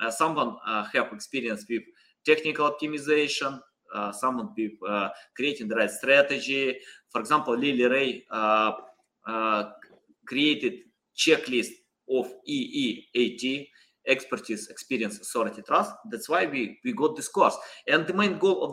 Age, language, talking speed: 20-39, English, 135 wpm